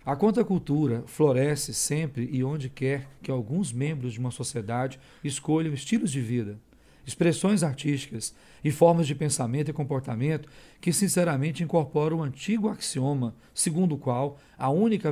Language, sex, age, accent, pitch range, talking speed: Portuguese, male, 40-59, Brazilian, 130-160 Hz, 145 wpm